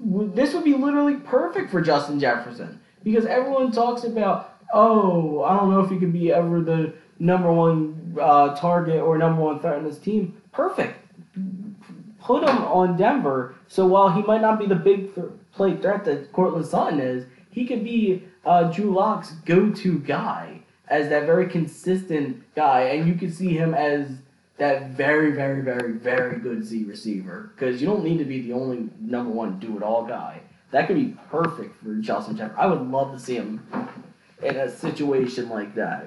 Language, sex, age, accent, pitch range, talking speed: English, male, 20-39, American, 135-195 Hz, 180 wpm